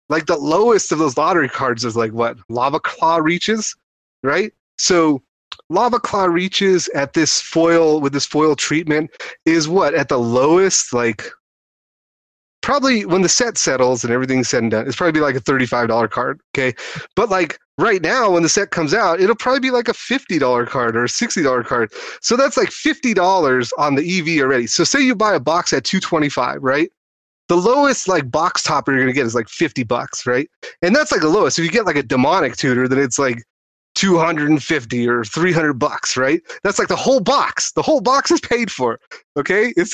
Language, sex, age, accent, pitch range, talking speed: English, male, 30-49, American, 135-205 Hz, 200 wpm